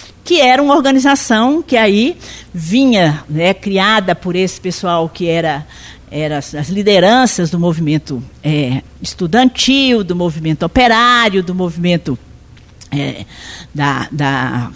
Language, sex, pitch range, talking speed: Portuguese, female, 175-245 Hz, 105 wpm